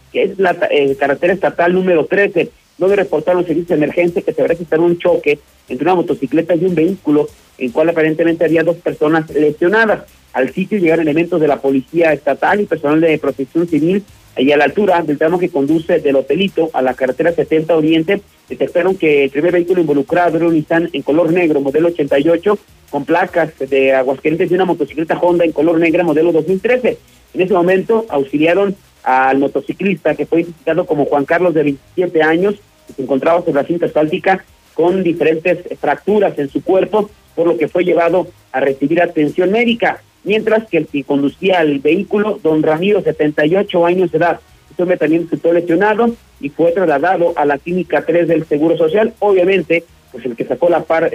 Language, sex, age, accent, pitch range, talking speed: Spanish, male, 40-59, Mexican, 150-180 Hz, 190 wpm